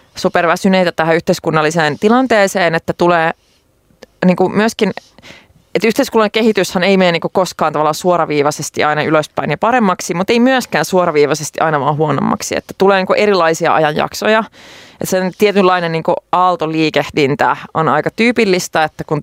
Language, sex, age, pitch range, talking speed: Finnish, female, 30-49, 160-190 Hz, 125 wpm